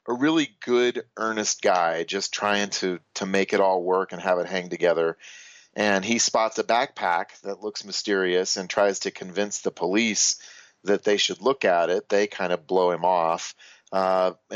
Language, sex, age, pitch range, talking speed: English, male, 40-59, 90-105 Hz, 185 wpm